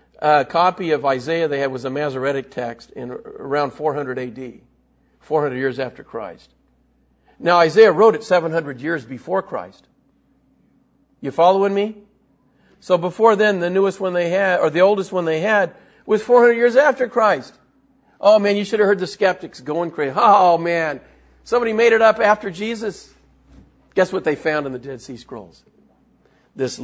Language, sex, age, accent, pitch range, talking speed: English, male, 50-69, American, 125-190 Hz, 170 wpm